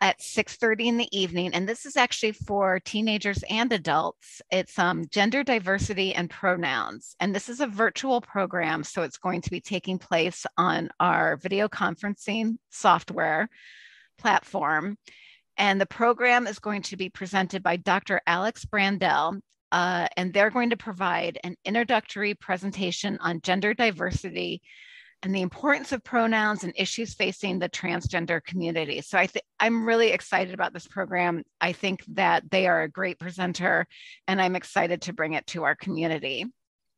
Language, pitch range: English, 180-215 Hz